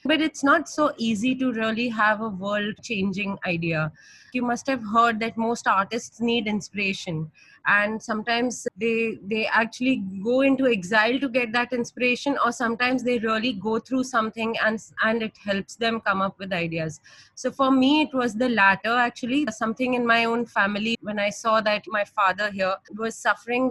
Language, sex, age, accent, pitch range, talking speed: English, female, 20-39, Indian, 210-245 Hz, 175 wpm